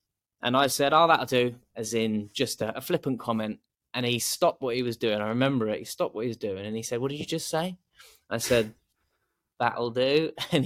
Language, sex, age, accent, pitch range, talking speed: English, male, 20-39, British, 105-125 Hz, 235 wpm